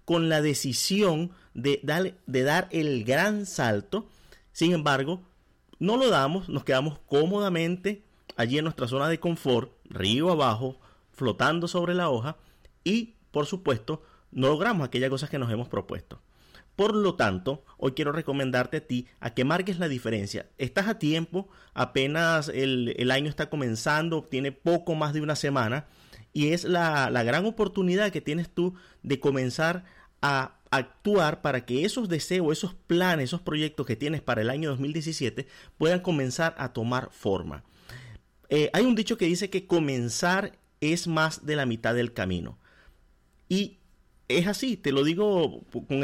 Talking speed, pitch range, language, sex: 160 wpm, 130-180 Hz, Spanish, male